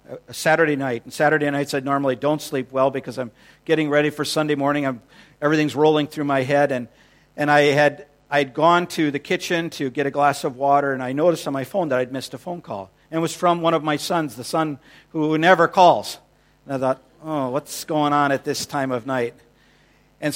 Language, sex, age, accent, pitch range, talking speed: English, male, 50-69, American, 125-150 Hz, 225 wpm